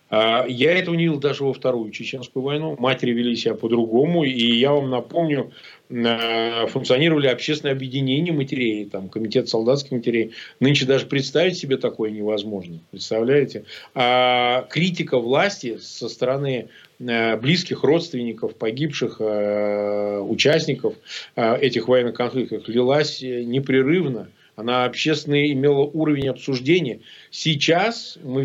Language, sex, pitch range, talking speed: Russian, male, 120-155 Hz, 110 wpm